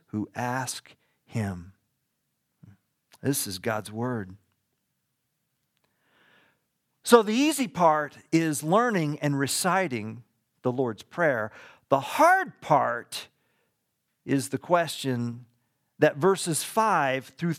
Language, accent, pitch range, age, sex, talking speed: English, American, 150-255 Hz, 50-69, male, 95 wpm